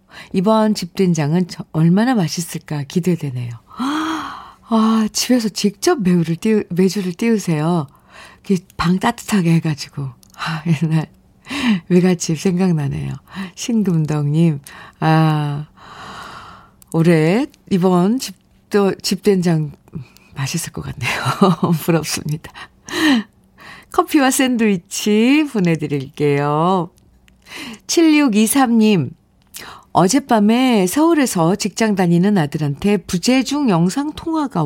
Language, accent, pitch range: Korean, native, 165-220 Hz